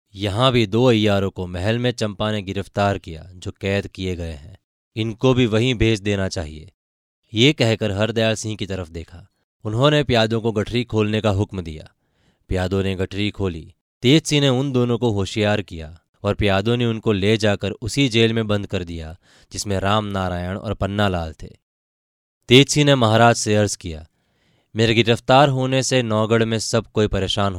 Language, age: Hindi, 20-39